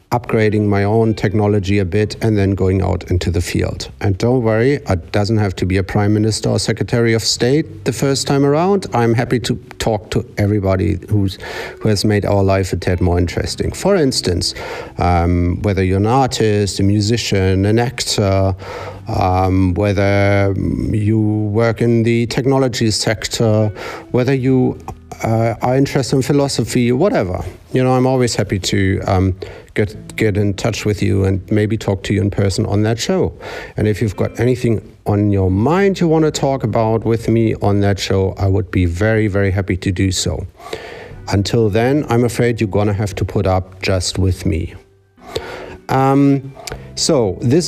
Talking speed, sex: 175 wpm, male